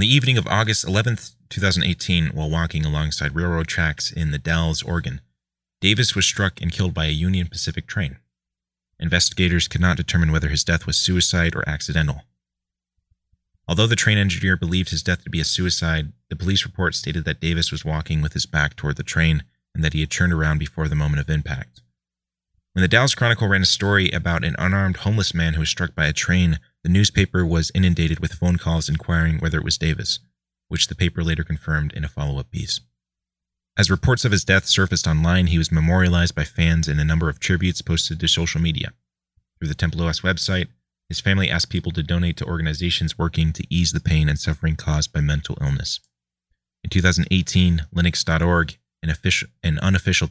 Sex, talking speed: male, 195 wpm